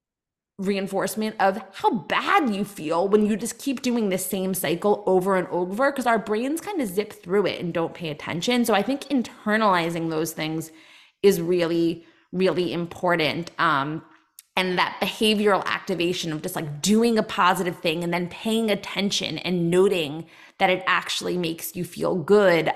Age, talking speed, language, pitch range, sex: 20-39, 170 wpm, English, 170-210 Hz, female